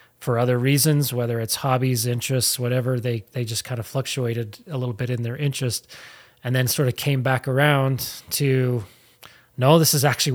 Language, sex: English, male